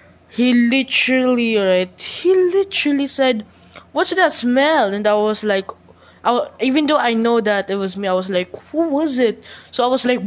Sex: female